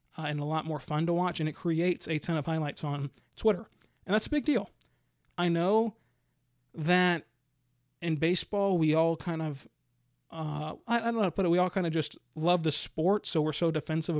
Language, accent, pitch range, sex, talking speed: English, American, 155-180 Hz, male, 220 wpm